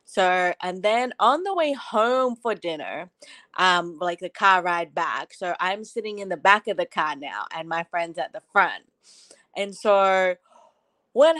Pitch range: 175-210 Hz